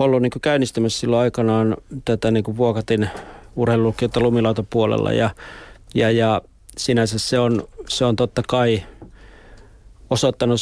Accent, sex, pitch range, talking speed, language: native, male, 110-125 Hz, 120 wpm, Finnish